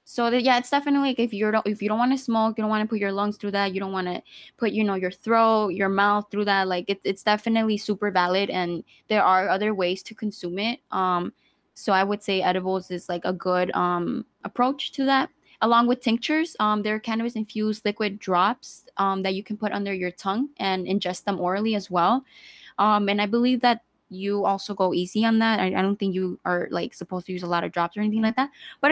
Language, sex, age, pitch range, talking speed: English, female, 20-39, 195-235 Hz, 240 wpm